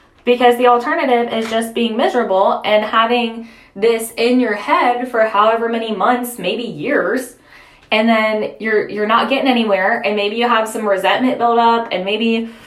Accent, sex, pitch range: American, female, 210-255 Hz